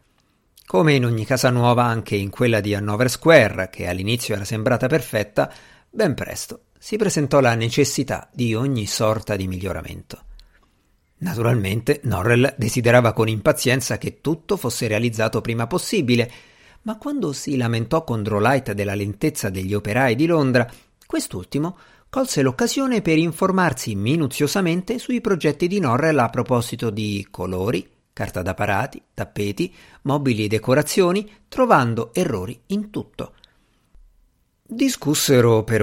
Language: Italian